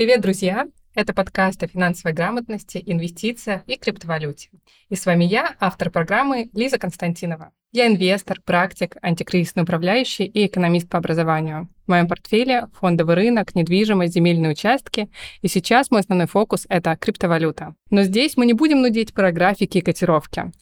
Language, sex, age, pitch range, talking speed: Russian, female, 20-39, 175-215 Hz, 155 wpm